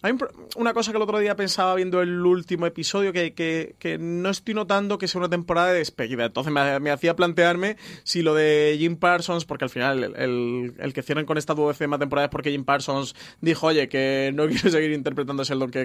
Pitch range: 140-170 Hz